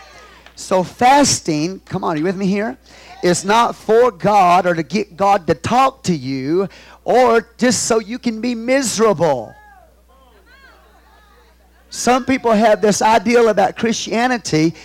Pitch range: 145-230 Hz